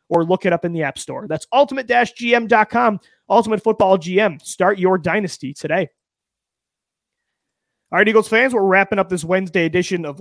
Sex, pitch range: male, 165-210 Hz